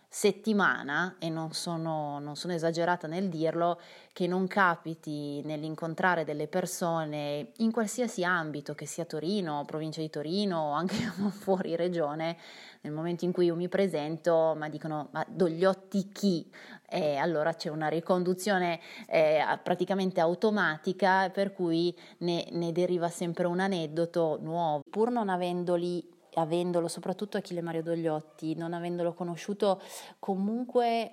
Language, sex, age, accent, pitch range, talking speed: Italian, female, 20-39, native, 160-185 Hz, 135 wpm